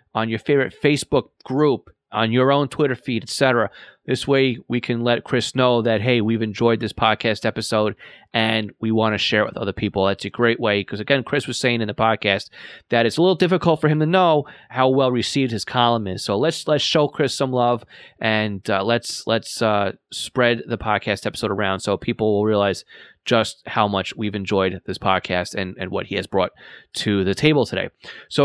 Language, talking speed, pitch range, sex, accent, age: English, 210 wpm, 110-140 Hz, male, American, 30-49